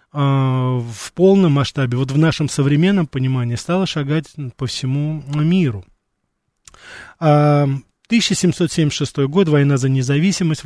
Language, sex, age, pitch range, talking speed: Russian, male, 20-39, 135-170 Hz, 100 wpm